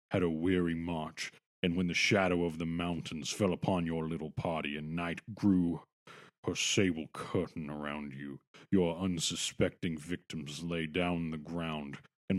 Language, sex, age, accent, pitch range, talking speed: English, male, 40-59, American, 80-95 Hz, 155 wpm